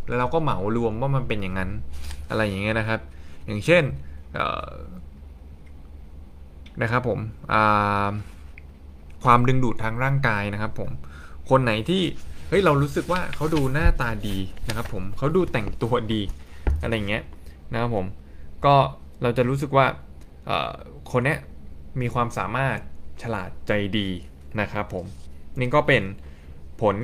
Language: Thai